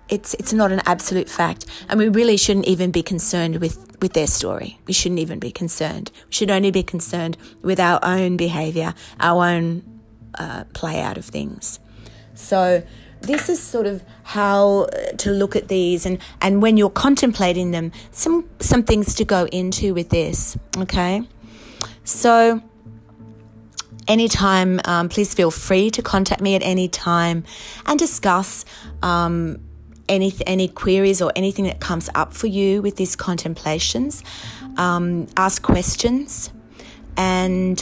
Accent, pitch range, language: Australian, 165-200 Hz, English